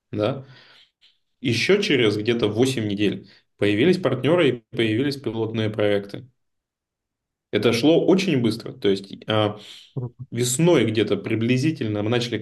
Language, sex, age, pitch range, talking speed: Russian, male, 20-39, 105-135 Hz, 105 wpm